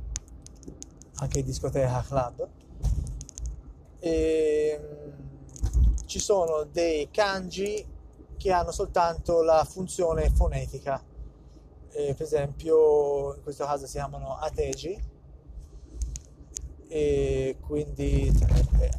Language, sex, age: Italian, male, 30-49